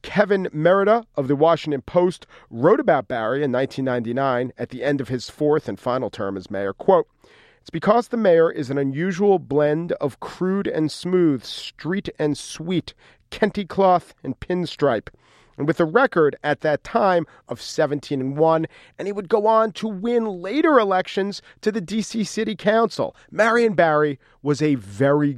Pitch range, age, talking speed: 140-195 Hz, 40-59, 170 wpm